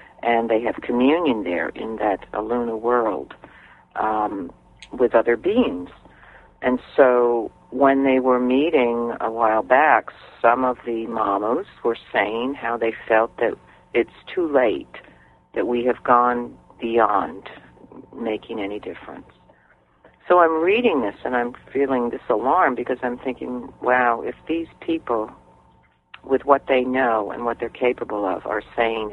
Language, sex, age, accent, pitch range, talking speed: English, female, 50-69, American, 110-130 Hz, 145 wpm